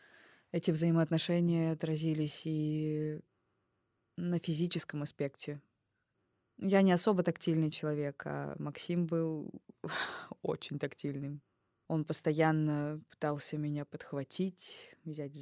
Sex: female